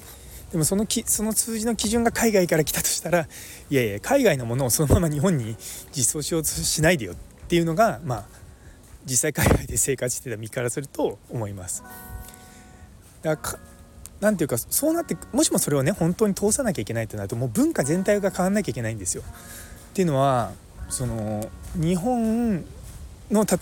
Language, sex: Japanese, male